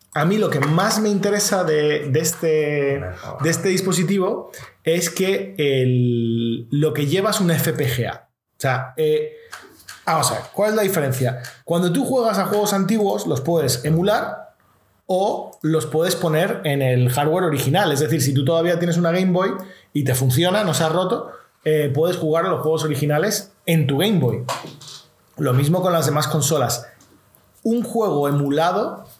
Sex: male